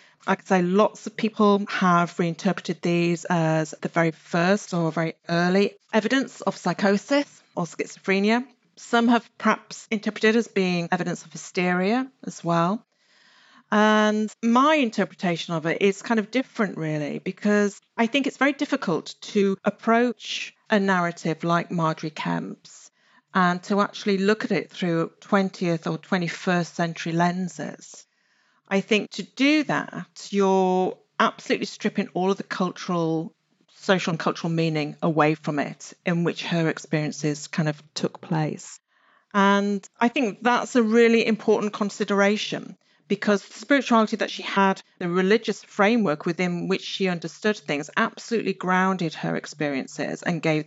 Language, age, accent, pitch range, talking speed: English, 40-59, British, 170-215 Hz, 145 wpm